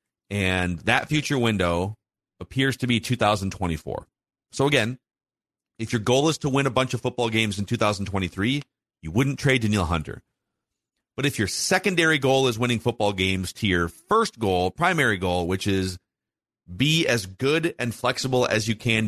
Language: English